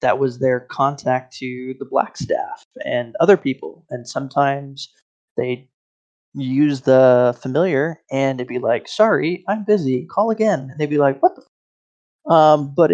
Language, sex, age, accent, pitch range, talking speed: English, male, 20-39, American, 130-160 Hz, 160 wpm